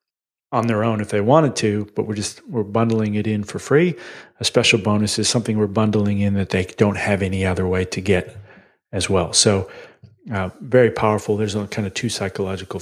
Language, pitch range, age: English, 105-120 Hz, 40-59